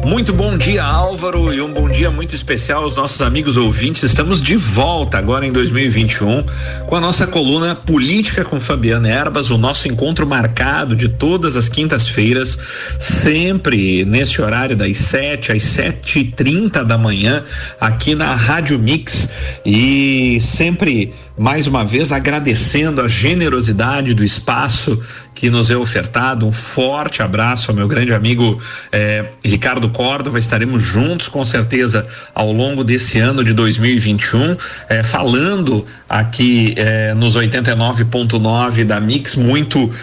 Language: Portuguese